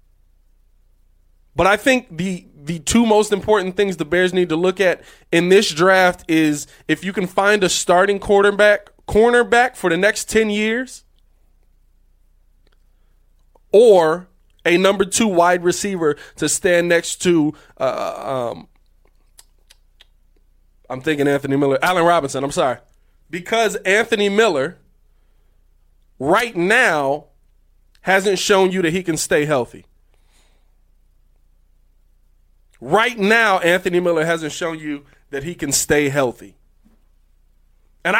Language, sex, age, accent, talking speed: English, male, 20-39, American, 125 wpm